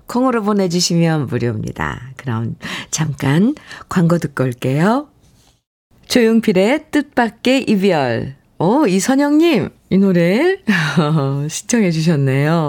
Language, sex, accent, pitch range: Korean, female, native, 150-245 Hz